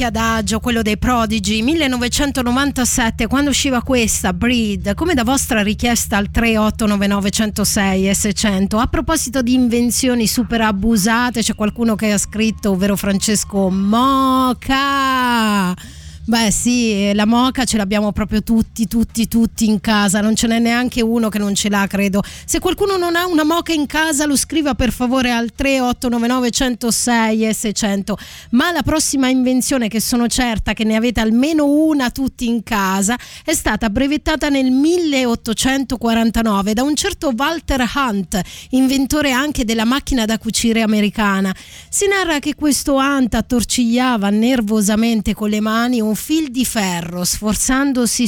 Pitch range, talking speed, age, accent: 215-265 Hz, 145 wpm, 30-49, native